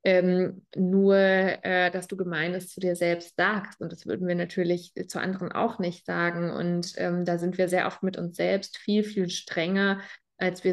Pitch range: 175-190 Hz